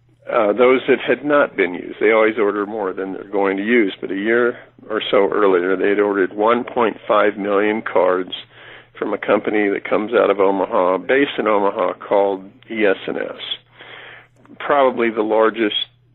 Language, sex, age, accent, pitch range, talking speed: English, male, 50-69, American, 105-150 Hz, 165 wpm